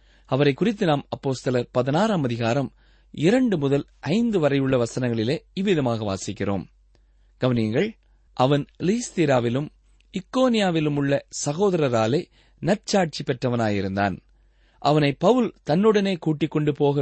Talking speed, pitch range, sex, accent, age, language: 100 wpm, 125-190 Hz, male, native, 30-49, Tamil